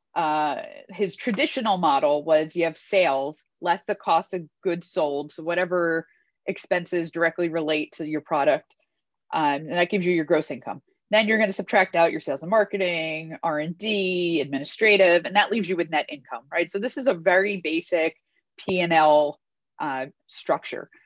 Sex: female